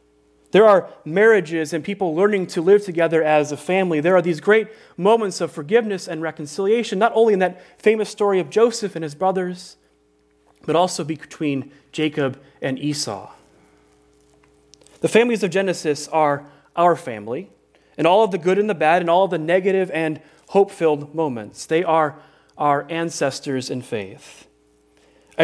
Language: English